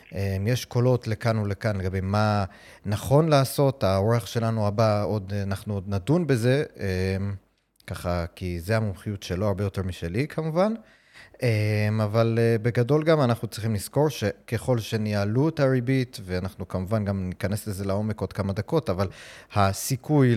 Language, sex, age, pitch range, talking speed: Hebrew, male, 30-49, 100-120 Hz, 135 wpm